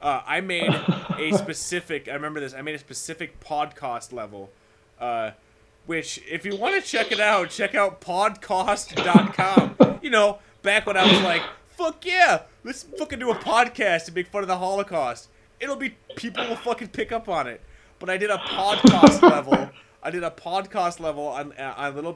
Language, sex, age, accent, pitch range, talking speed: English, male, 20-39, American, 135-190 Hz, 190 wpm